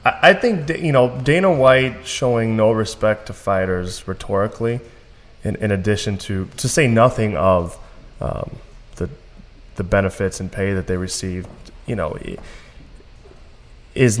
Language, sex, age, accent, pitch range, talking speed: English, male, 20-39, American, 95-115 Hz, 135 wpm